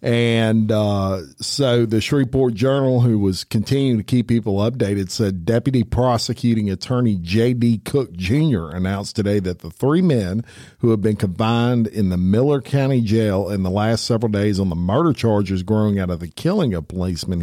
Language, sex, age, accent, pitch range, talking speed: English, male, 50-69, American, 95-120 Hz, 175 wpm